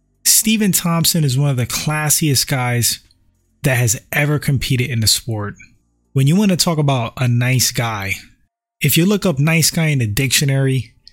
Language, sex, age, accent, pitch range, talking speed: English, male, 20-39, American, 115-145 Hz, 180 wpm